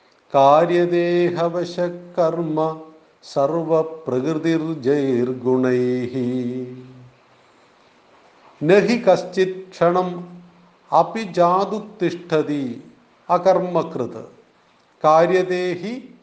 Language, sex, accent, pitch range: Malayalam, male, native, 150-195 Hz